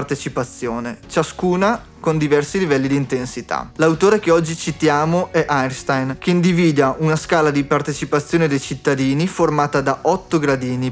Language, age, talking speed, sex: Italian, 30-49, 135 wpm, male